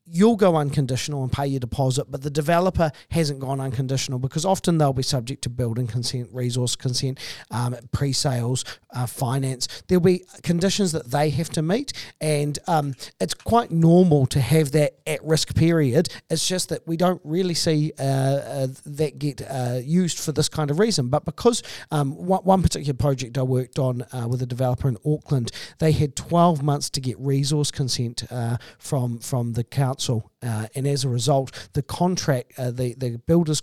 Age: 40-59